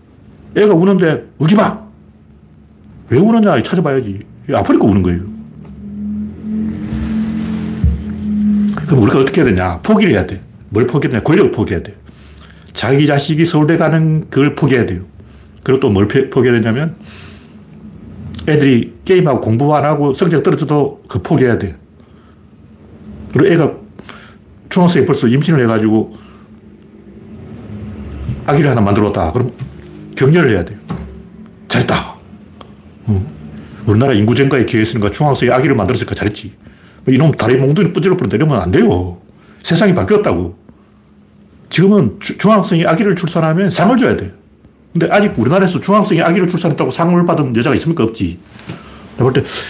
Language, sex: Korean, male